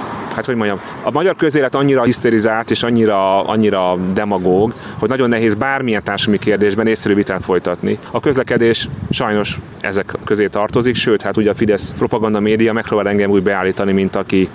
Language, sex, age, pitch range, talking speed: Hungarian, male, 30-49, 100-120 Hz, 165 wpm